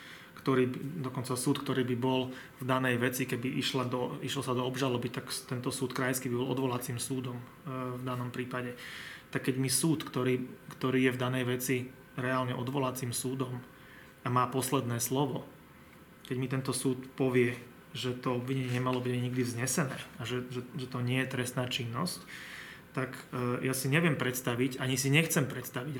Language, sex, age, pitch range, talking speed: Slovak, male, 30-49, 125-135 Hz, 170 wpm